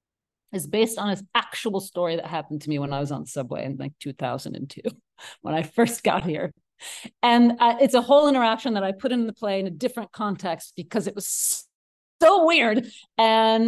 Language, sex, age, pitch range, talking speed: English, female, 40-59, 205-280 Hz, 195 wpm